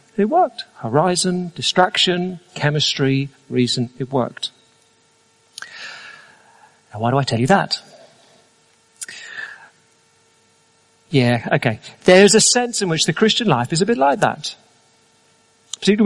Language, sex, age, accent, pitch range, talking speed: English, male, 40-59, British, 140-205 Hz, 115 wpm